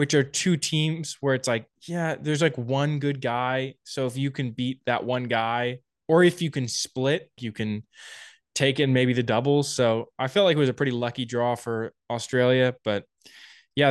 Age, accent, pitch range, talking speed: 20-39, American, 120-150 Hz, 205 wpm